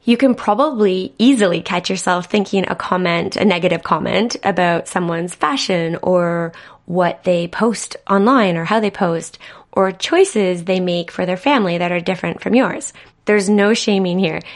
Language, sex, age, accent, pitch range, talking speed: English, female, 20-39, American, 175-220 Hz, 165 wpm